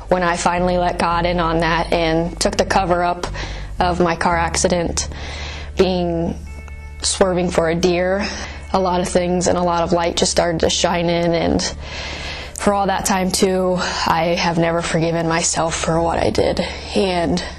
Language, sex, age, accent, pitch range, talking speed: English, female, 20-39, American, 165-195 Hz, 175 wpm